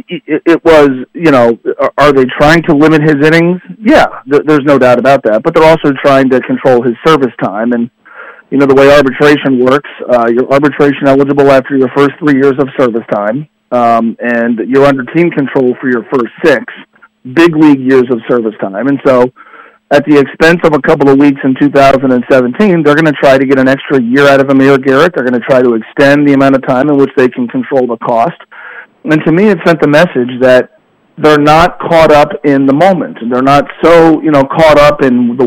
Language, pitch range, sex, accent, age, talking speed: English, 130-155 Hz, male, American, 40-59, 215 wpm